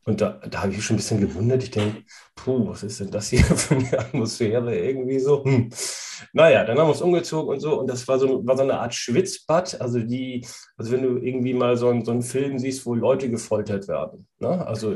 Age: 40-59